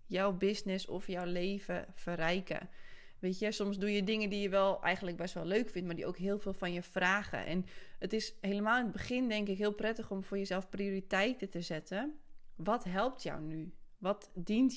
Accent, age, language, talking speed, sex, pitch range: Dutch, 20-39, Dutch, 205 wpm, female, 175-200 Hz